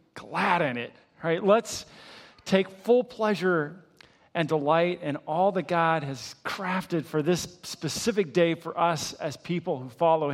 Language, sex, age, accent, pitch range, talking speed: English, male, 40-59, American, 160-205 Hz, 155 wpm